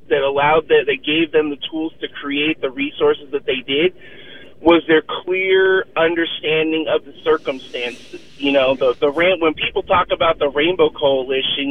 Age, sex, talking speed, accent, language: 40-59, male, 175 wpm, American, English